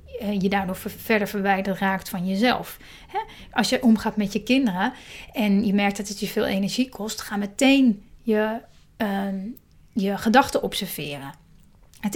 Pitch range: 205-245 Hz